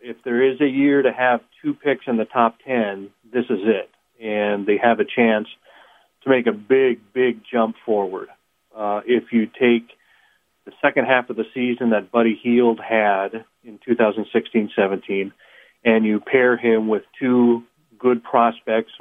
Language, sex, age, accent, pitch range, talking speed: English, male, 40-59, American, 110-125 Hz, 165 wpm